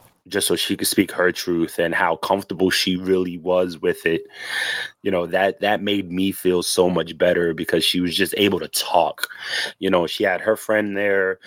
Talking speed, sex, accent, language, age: 205 wpm, male, American, English, 20-39